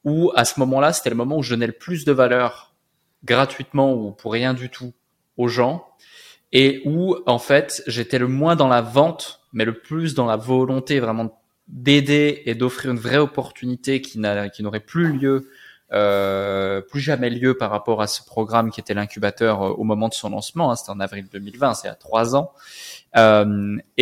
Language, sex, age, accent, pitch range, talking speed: French, male, 20-39, French, 110-135 Hz, 195 wpm